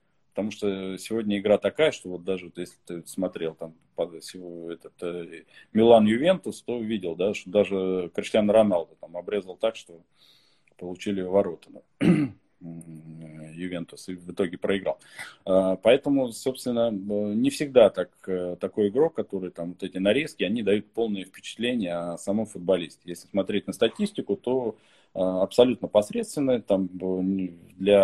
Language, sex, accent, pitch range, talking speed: Russian, male, native, 90-110 Hz, 135 wpm